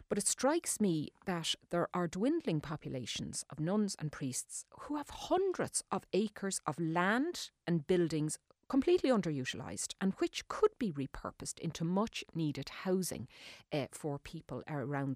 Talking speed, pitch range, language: 145 wpm, 150-210 Hz, English